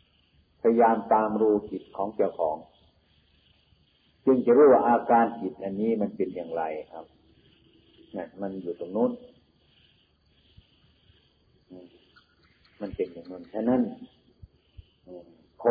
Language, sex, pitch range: Thai, male, 85-115 Hz